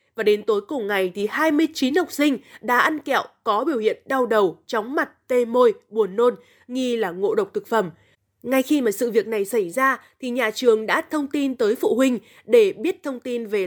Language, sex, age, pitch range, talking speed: Vietnamese, female, 20-39, 225-330 Hz, 225 wpm